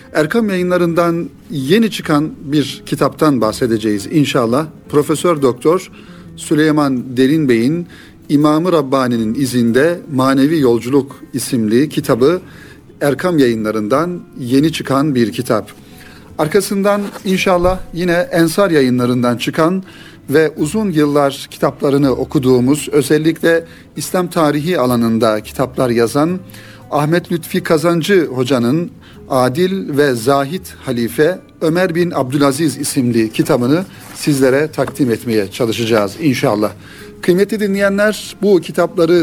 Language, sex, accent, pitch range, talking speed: Turkish, male, native, 130-175 Hz, 100 wpm